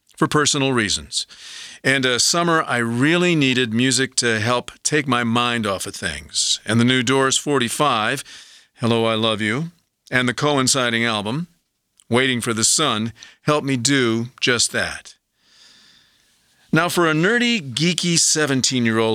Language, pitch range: English, 115-165 Hz